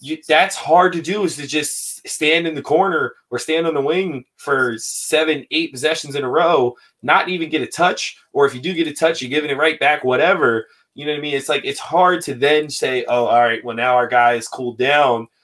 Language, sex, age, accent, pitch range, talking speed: English, male, 20-39, American, 120-155 Hz, 245 wpm